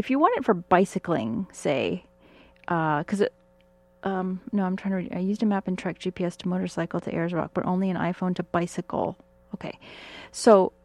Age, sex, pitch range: 30-49, female, 165-200 Hz